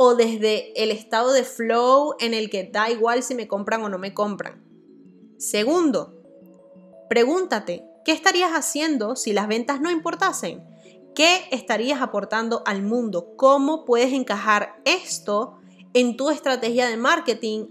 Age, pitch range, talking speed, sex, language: 20-39, 215-260 Hz, 140 wpm, female, Spanish